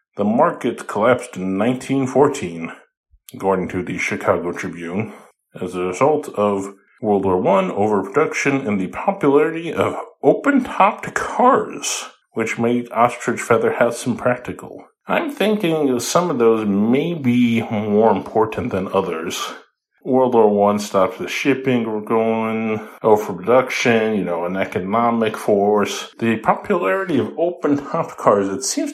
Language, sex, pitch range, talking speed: English, male, 100-160 Hz, 130 wpm